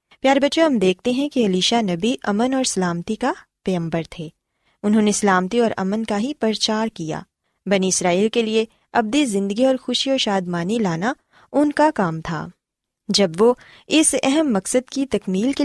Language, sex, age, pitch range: Urdu, female, 20-39, 185-255 Hz